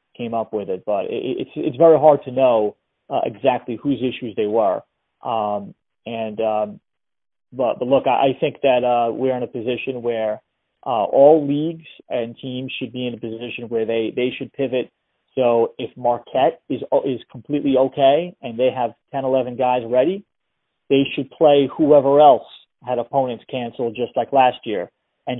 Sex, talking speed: male, 175 wpm